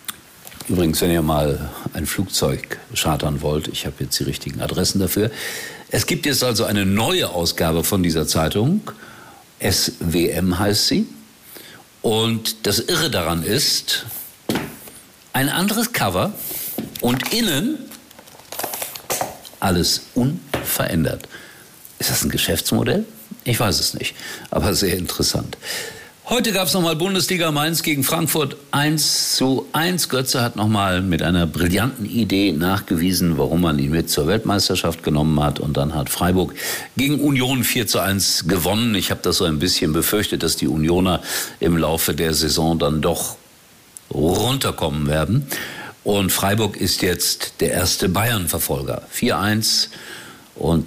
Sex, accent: male, German